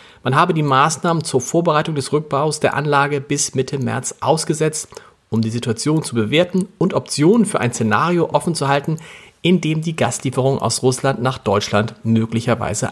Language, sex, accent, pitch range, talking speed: German, male, German, 125-165 Hz, 165 wpm